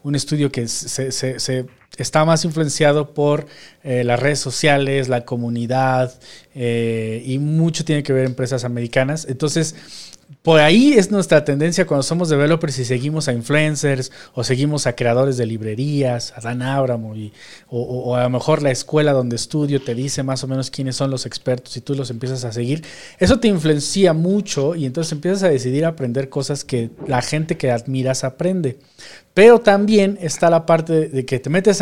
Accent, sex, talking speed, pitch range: Mexican, male, 180 wpm, 130-165 Hz